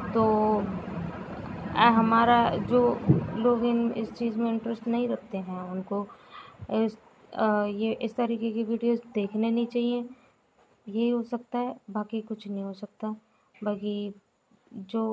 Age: 20-39